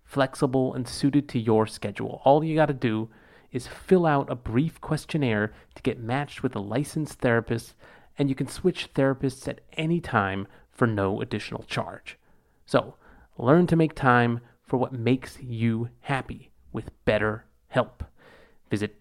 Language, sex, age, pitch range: English, male, 30-49, 115-145 Hz